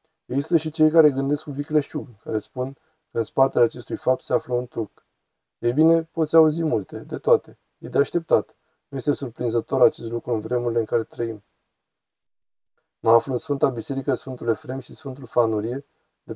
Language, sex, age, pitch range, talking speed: Romanian, male, 20-39, 120-155 Hz, 180 wpm